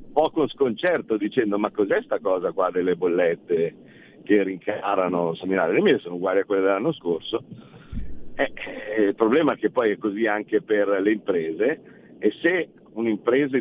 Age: 50-69